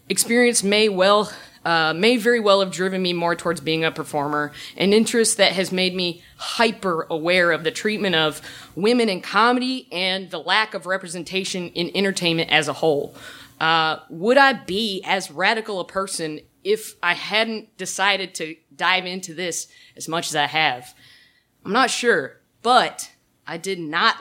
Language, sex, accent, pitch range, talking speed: English, female, American, 165-215 Hz, 165 wpm